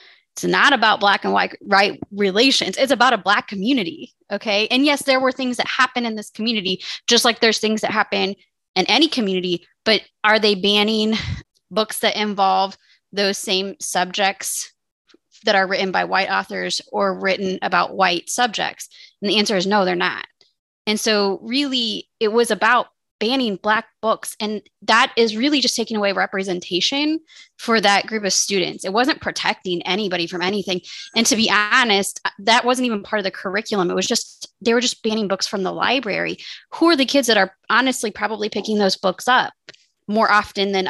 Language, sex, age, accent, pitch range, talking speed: English, female, 20-39, American, 195-230 Hz, 185 wpm